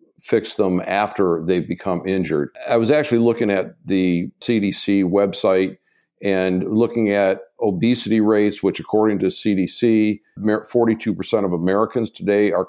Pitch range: 95-115 Hz